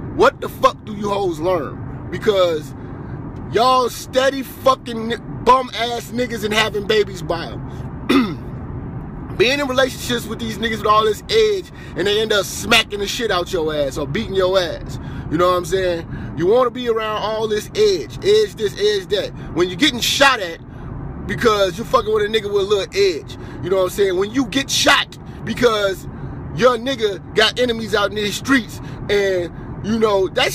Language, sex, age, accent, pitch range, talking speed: English, male, 30-49, American, 185-260 Hz, 190 wpm